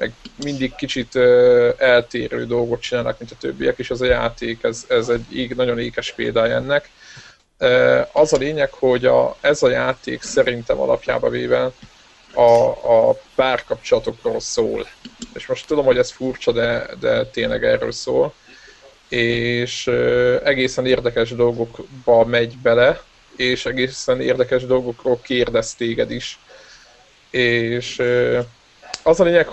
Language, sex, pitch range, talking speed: Hungarian, male, 120-150 Hz, 125 wpm